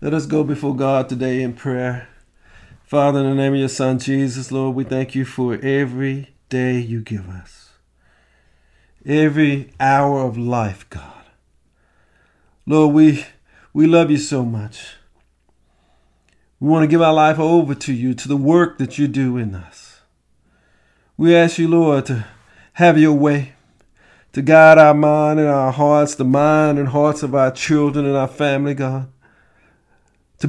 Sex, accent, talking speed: male, American, 160 wpm